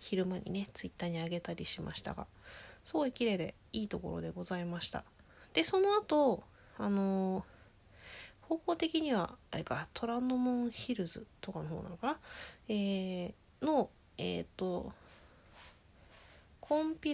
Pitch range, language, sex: 175-260 Hz, Japanese, female